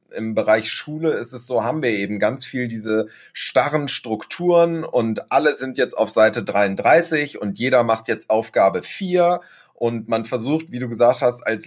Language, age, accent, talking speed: German, 30-49, German, 180 wpm